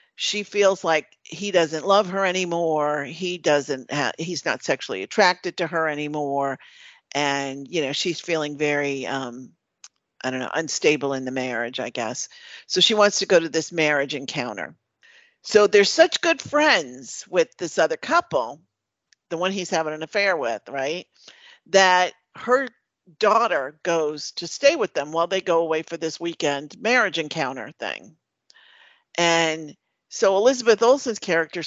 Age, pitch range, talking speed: 50-69, 150-205 Hz, 155 wpm